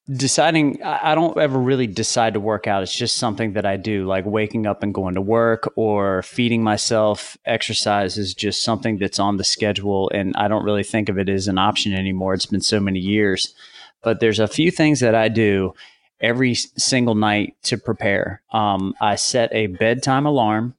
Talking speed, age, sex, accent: 195 wpm, 30-49, male, American